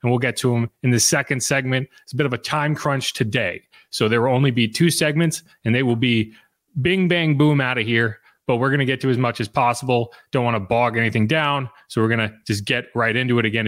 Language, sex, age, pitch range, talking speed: English, male, 30-49, 130-190 Hz, 265 wpm